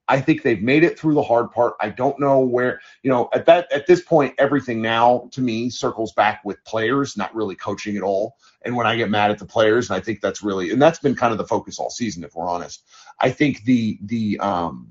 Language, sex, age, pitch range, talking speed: English, male, 30-49, 110-155 Hz, 255 wpm